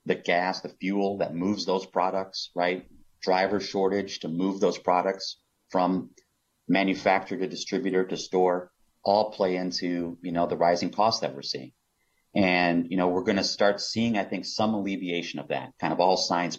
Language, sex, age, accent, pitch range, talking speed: English, male, 30-49, American, 85-100 Hz, 180 wpm